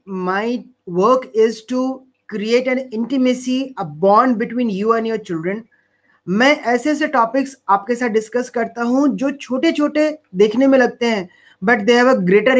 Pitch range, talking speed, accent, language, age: 205-260 Hz, 165 wpm, native, Hindi, 30-49